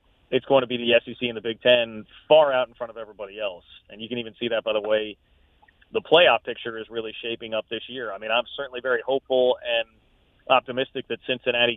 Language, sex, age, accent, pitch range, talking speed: English, male, 30-49, American, 110-135 Hz, 230 wpm